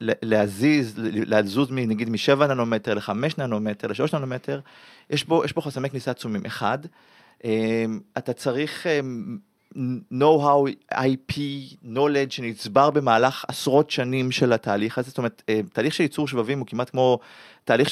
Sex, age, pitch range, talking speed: male, 30-49, 115-150 Hz, 125 wpm